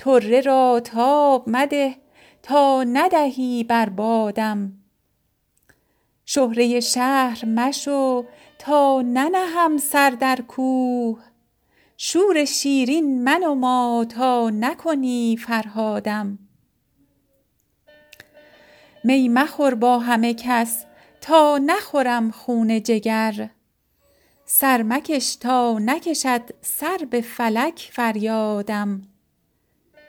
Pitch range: 230-285 Hz